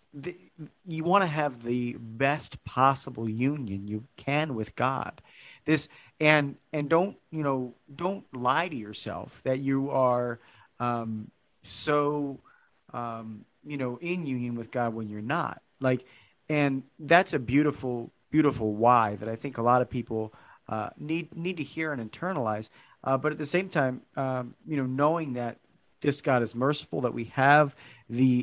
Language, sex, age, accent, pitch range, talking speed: English, male, 40-59, American, 120-150 Hz, 165 wpm